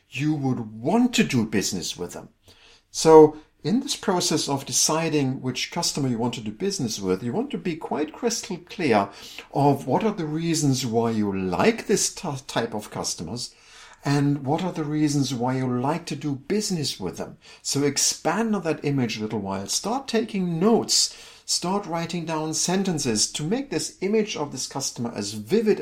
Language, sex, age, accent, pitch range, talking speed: English, male, 50-69, German, 125-175 Hz, 180 wpm